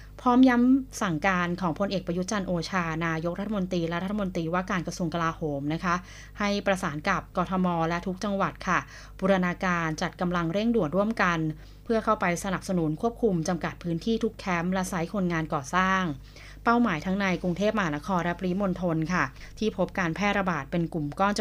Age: 20-39